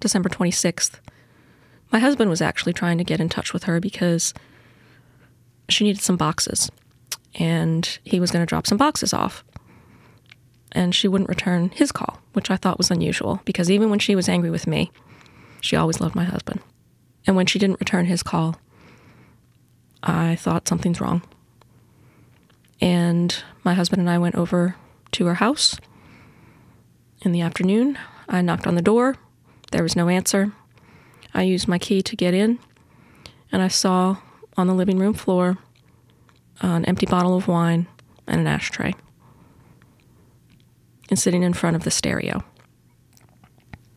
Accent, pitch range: American, 165-195 Hz